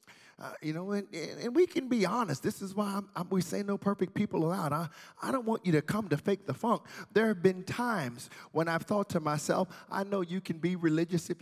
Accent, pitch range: American, 170-245 Hz